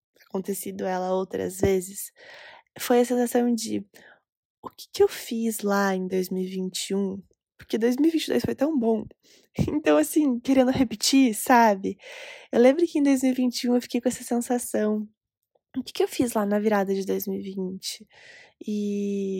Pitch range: 195-235 Hz